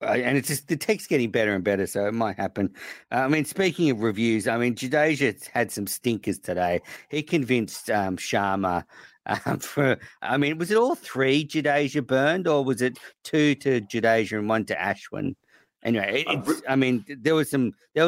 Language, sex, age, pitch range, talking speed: English, male, 50-69, 105-150 Hz, 200 wpm